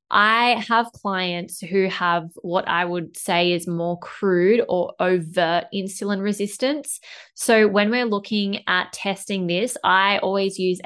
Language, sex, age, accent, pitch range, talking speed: English, female, 20-39, Australian, 180-210 Hz, 145 wpm